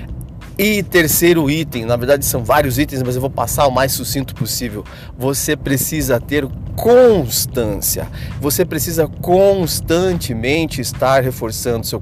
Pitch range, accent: 120-150 Hz, Brazilian